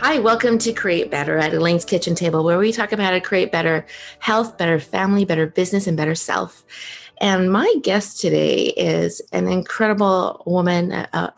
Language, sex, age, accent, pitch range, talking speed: English, female, 30-49, American, 165-205 Hz, 180 wpm